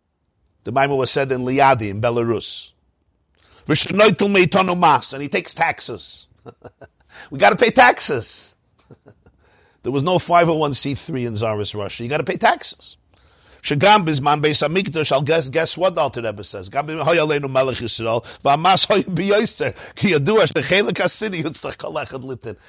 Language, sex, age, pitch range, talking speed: English, male, 50-69, 110-165 Hz, 80 wpm